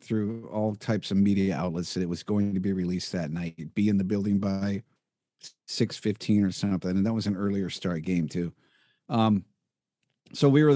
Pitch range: 100-120 Hz